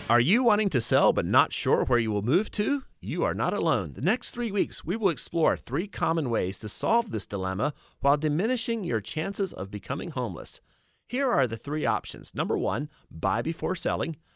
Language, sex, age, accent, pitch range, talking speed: English, male, 30-49, American, 100-155 Hz, 200 wpm